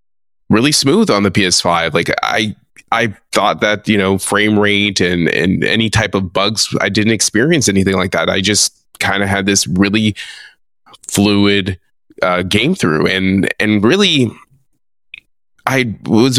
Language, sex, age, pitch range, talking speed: English, male, 20-39, 100-120 Hz, 155 wpm